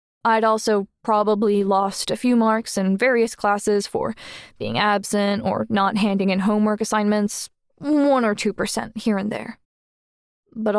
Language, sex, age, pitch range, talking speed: English, female, 10-29, 200-230 Hz, 150 wpm